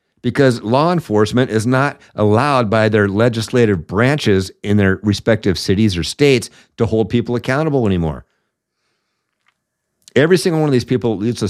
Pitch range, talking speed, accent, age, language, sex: 95-115 Hz, 150 wpm, American, 50-69, English, male